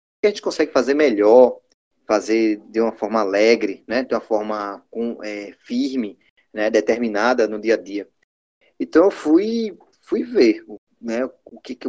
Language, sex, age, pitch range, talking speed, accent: Portuguese, male, 20-39, 110-170 Hz, 160 wpm, Brazilian